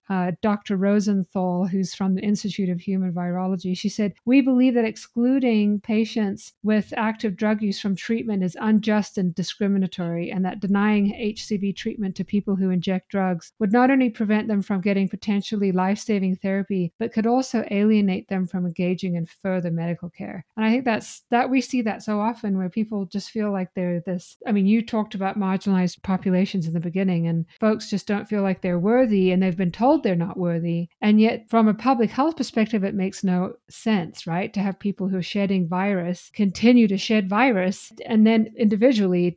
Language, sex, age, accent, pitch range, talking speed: English, female, 50-69, American, 185-215 Hz, 195 wpm